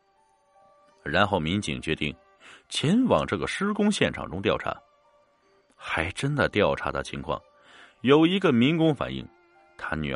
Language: Chinese